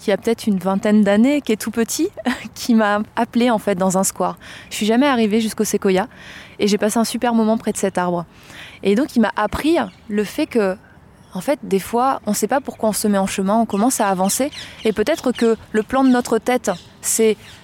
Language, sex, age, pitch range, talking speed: French, female, 20-39, 195-230 Hz, 240 wpm